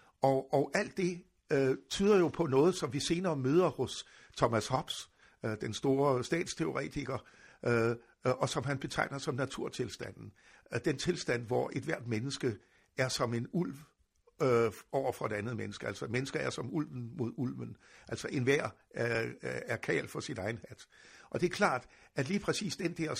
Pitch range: 120-165 Hz